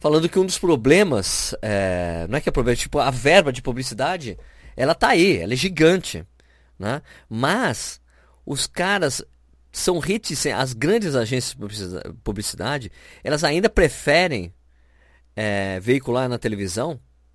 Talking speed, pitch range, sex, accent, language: 140 wpm, 90-155 Hz, male, Brazilian, Portuguese